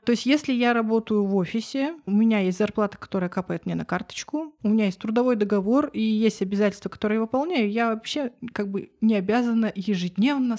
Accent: native